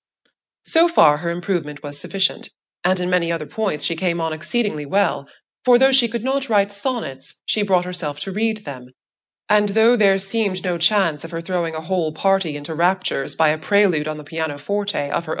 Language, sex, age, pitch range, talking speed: English, female, 30-49, 150-200 Hz, 200 wpm